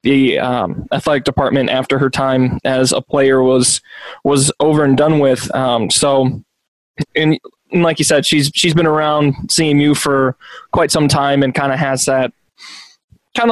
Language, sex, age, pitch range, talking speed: English, male, 20-39, 135-155 Hz, 170 wpm